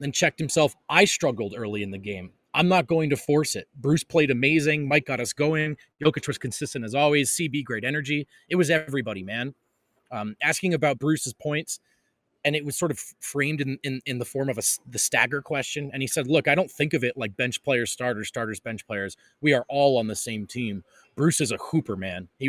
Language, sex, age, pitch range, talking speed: English, male, 20-39, 120-160 Hz, 225 wpm